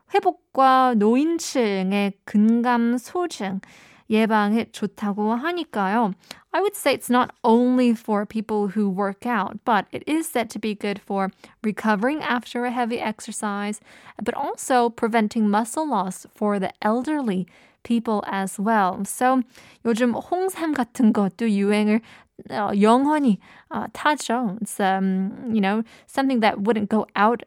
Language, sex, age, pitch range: Korean, female, 20-39, 205-255 Hz